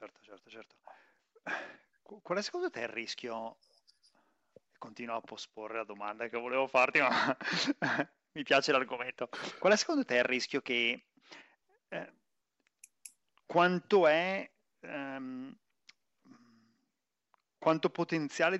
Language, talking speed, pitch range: Italian, 110 wpm, 125-160 Hz